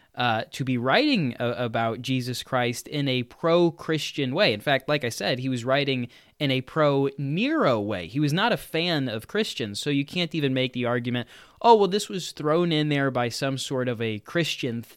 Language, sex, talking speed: English, male, 200 wpm